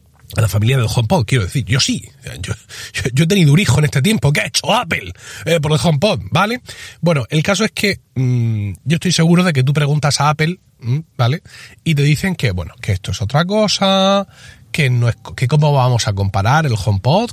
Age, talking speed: 30-49, 220 wpm